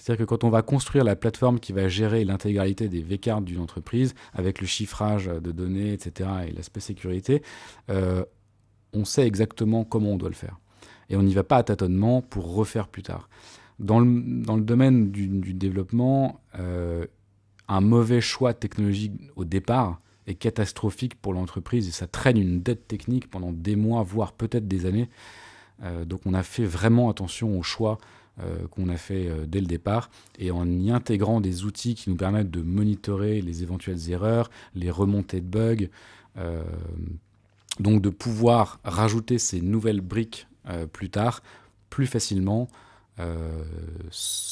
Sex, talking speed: male, 170 wpm